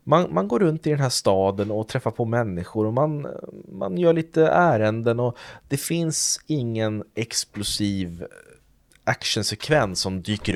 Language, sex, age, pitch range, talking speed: Swedish, male, 30-49, 100-150 Hz, 150 wpm